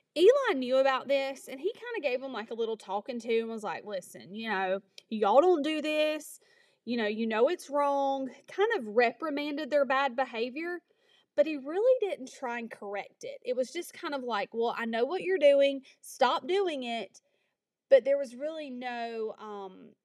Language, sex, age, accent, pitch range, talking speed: English, female, 30-49, American, 225-305 Hz, 200 wpm